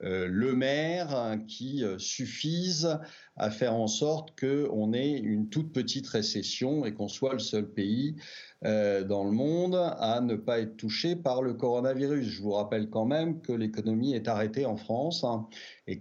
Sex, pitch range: male, 105-130 Hz